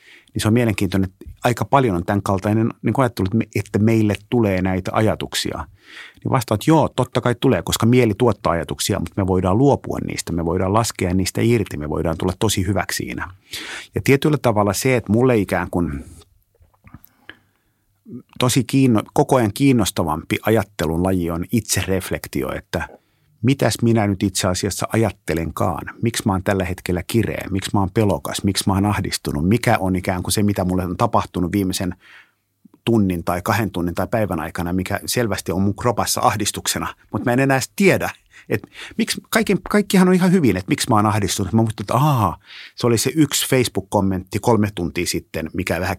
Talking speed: 175 wpm